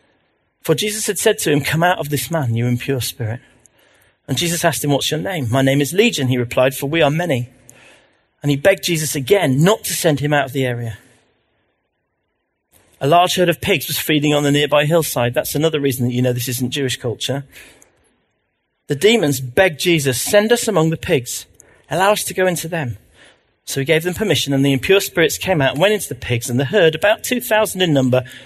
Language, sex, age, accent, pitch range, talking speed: English, male, 40-59, British, 130-180 Hz, 215 wpm